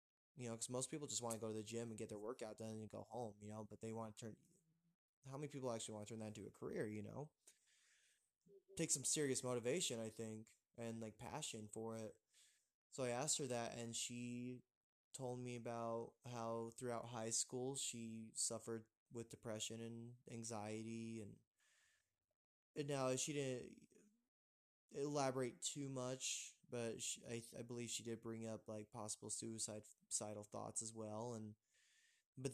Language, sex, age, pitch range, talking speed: English, male, 20-39, 110-130 Hz, 175 wpm